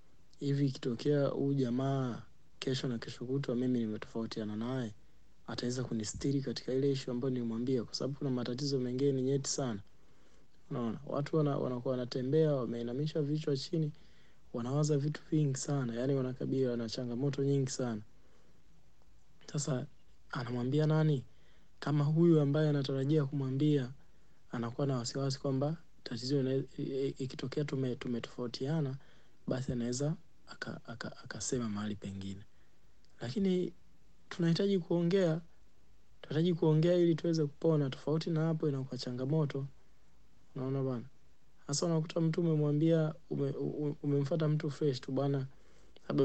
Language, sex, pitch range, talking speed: Swahili, male, 120-150 Hz, 115 wpm